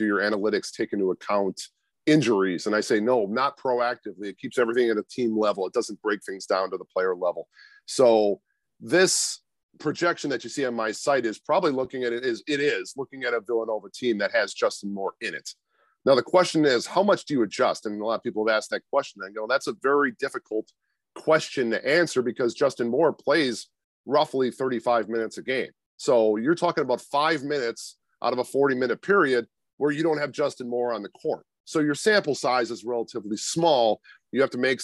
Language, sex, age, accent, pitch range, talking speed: English, male, 40-59, American, 110-145 Hz, 215 wpm